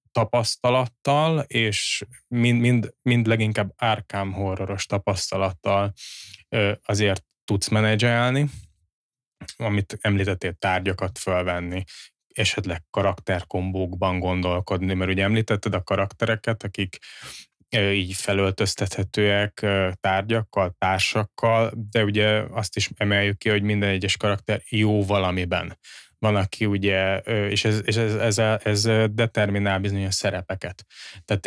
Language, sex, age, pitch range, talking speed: Hungarian, male, 20-39, 95-110 Hz, 105 wpm